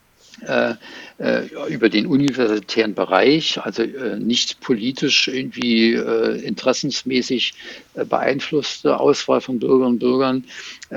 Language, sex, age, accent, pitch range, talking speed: English, male, 60-79, German, 110-130 Hz, 110 wpm